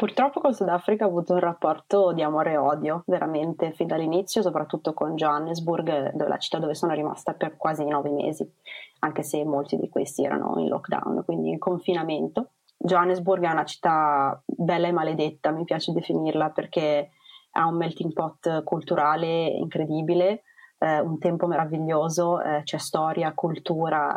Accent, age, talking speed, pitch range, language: native, 30-49, 155 wpm, 150-180 Hz, Italian